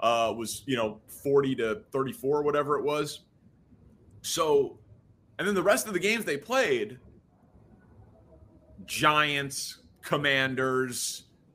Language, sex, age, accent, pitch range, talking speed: English, male, 30-49, American, 120-160 Hz, 115 wpm